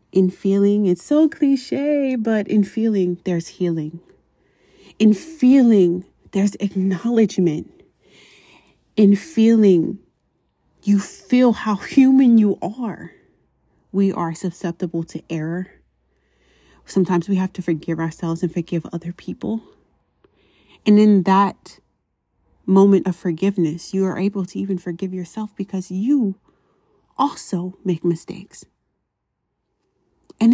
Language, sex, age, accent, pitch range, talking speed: English, female, 30-49, American, 180-215 Hz, 110 wpm